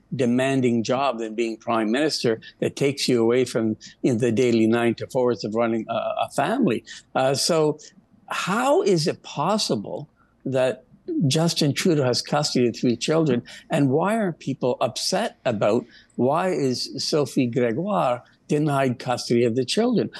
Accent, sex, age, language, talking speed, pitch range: American, male, 60-79, English, 145 wpm, 120-150 Hz